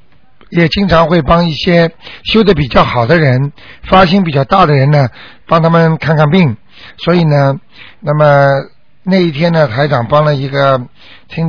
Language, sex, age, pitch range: Chinese, male, 60-79, 135-165 Hz